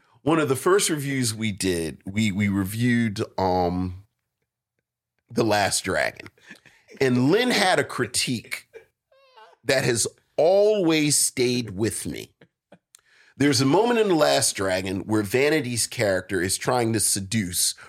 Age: 40-59